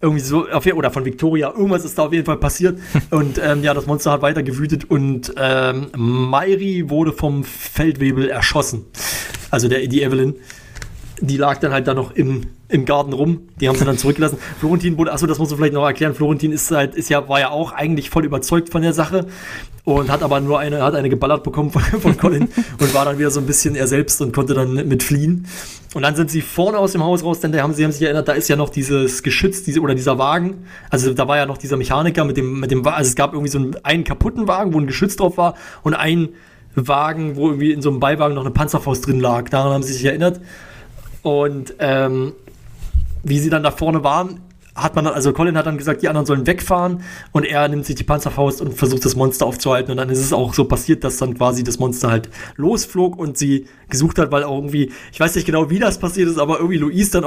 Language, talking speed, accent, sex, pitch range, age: German, 240 wpm, German, male, 135-165 Hz, 30-49